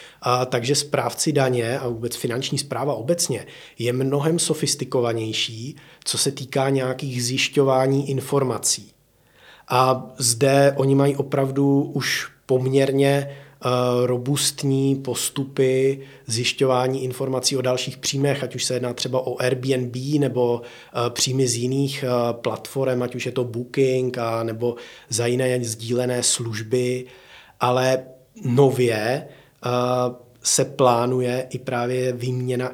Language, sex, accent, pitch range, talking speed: Czech, male, native, 125-135 Hz, 110 wpm